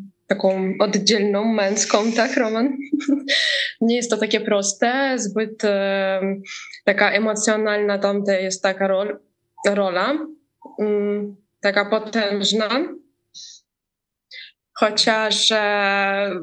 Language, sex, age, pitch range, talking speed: Polish, female, 20-39, 200-235 Hz, 75 wpm